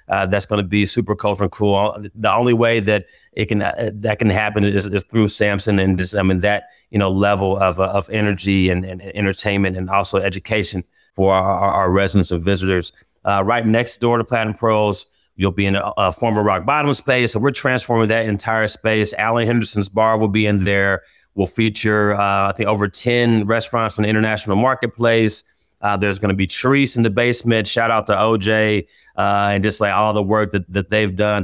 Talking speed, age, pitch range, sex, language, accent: 215 wpm, 30-49, 100-110 Hz, male, English, American